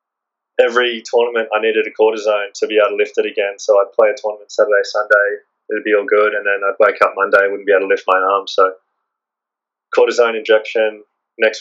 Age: 20-39